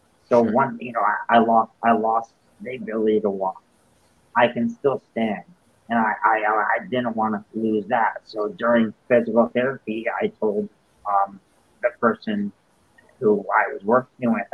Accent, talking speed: American, 165 wpm